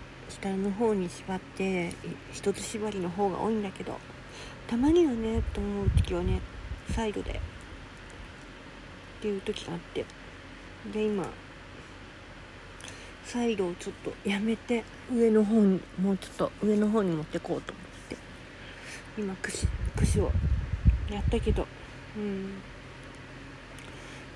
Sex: female